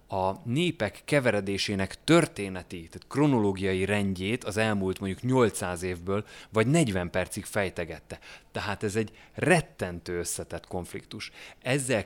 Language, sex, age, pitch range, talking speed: Hungarian, male, 30-49, 90-110 Hz, 115 wpm